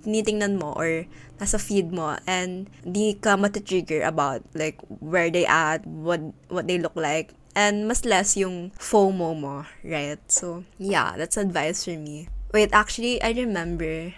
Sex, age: female, 20-39